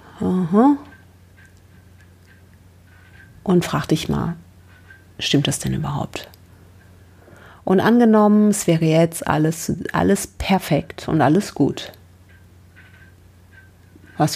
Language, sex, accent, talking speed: German, female, German, 90 wpm